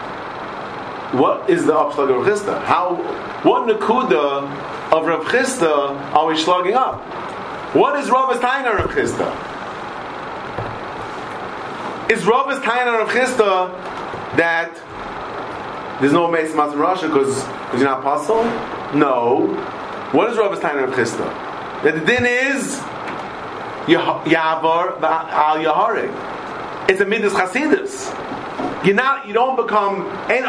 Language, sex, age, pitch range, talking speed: English, male, 40-59, 160-255 Hz, 120 wpm